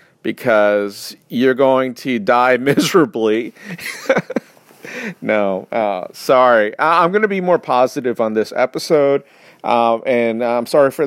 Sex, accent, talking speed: male, American, 135 wpm